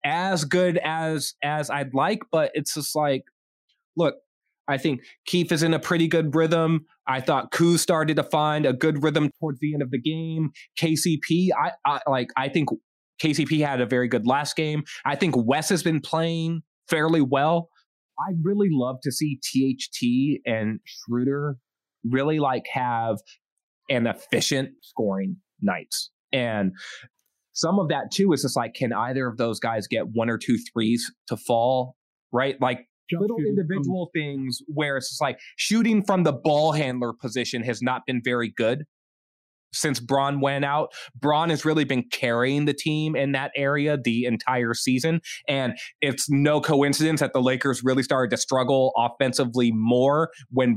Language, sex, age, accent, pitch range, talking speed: English, male, 20-39, American, 125-160 Hz, 170 wpm